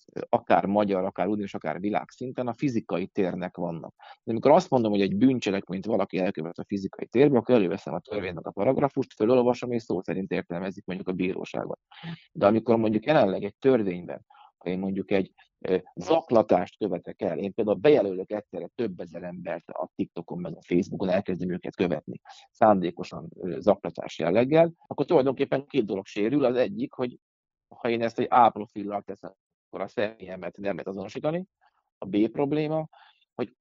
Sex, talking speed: male, 165 wpm